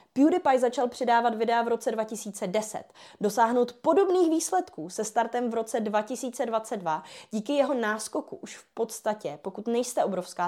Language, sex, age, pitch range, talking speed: Czech, female, 20-39, 185-245 Hz, 135 wpm